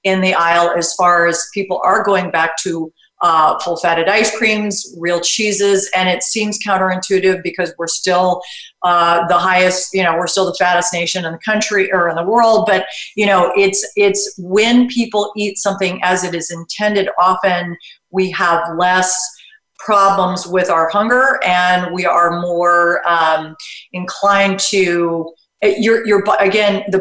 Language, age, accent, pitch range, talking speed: English, 40-59, American, 175-200 Hz, 160 wpm